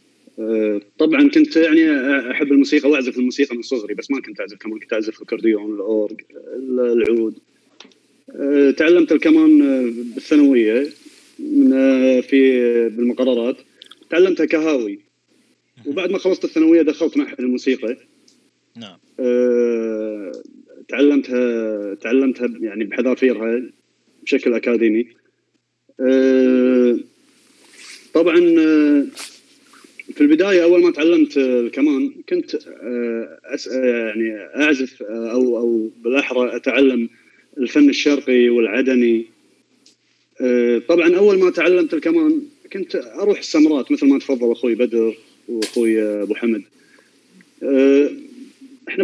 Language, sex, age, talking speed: Arabic, male, 30-49, 90 wpm